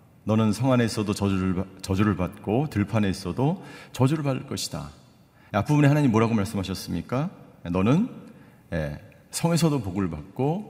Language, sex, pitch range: Korean, male, 95-140 Hz